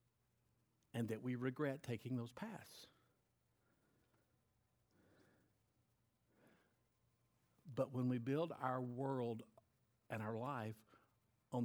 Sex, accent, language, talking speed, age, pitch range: male, American, English, 90 wpm, 50-69, 115-180 Hz